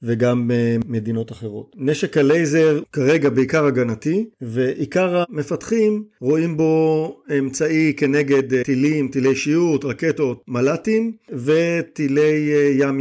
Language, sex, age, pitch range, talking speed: Hebrew, male, 50-69, 130-155 Hz, 95 wpm